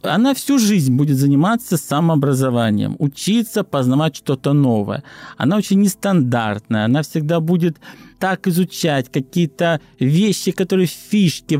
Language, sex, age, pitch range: Russian, male, 50-69, 140-195 Hz